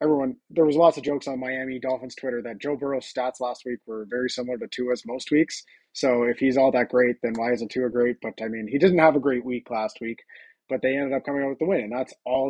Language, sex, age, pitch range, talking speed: English, male, 20-39, 125-150 Hz, 275 wpm